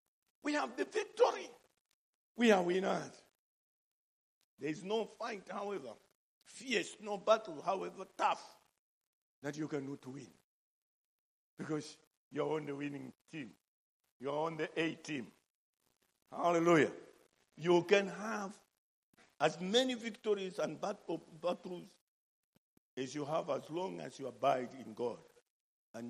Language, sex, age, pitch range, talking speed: English, male, 50-69, 150-215 Hz, 125 wpm